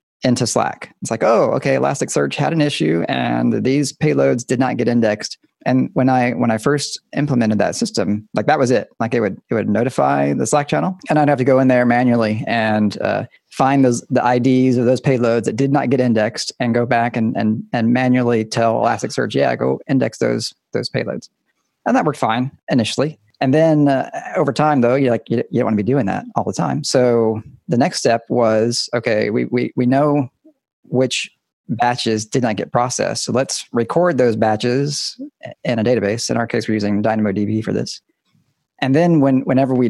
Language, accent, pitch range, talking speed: English, American, 110-135 Hz, 205 wpm